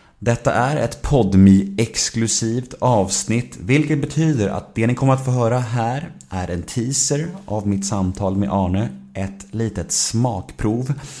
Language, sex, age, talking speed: Swedish, male, 30-49, 145 wpm